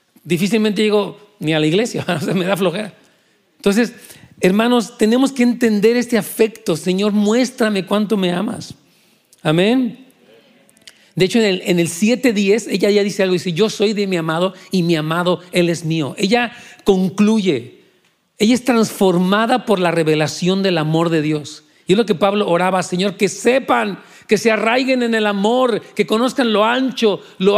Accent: Mexican